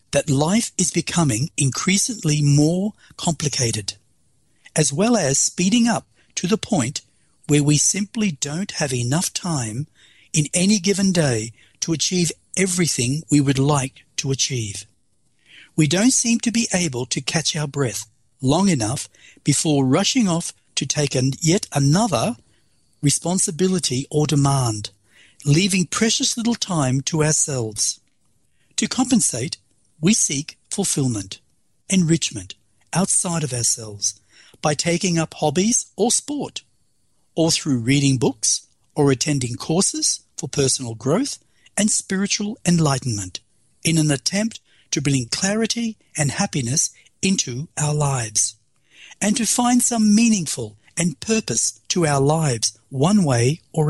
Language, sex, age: English, male, 60-79